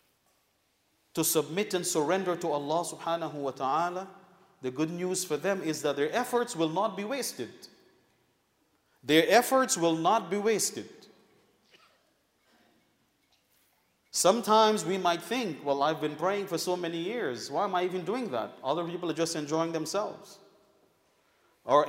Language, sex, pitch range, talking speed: English, male, 160-205 Hz, 145 wpm